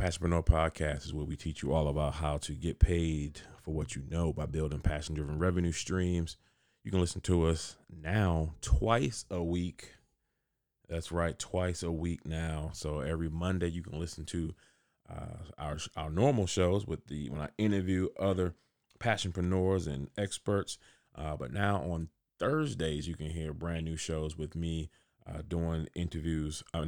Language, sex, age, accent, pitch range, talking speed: English, male, 30-49, American, 75-90 Hz, 170 wpm